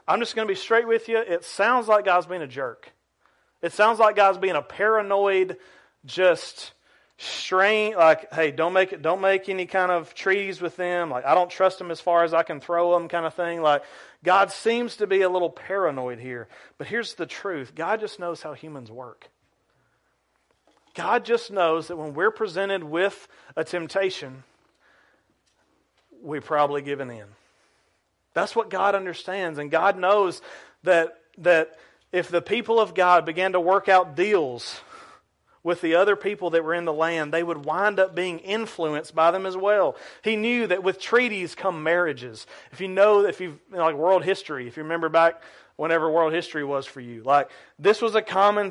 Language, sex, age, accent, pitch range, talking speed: English, male, 40-59, American, 165-195 Hz, 190 wpm